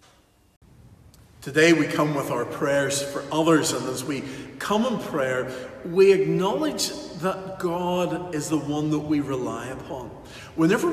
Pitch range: 125-155 Hz